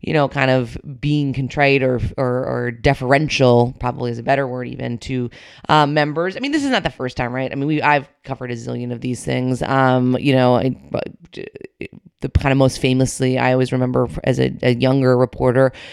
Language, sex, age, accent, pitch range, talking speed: English, female, 30-49, American, 130-160 Hz, 205 wpm